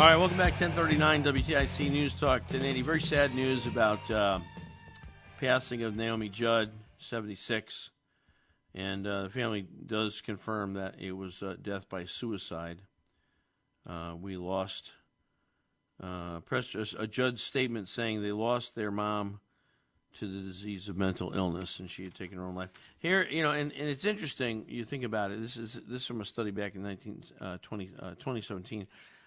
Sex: male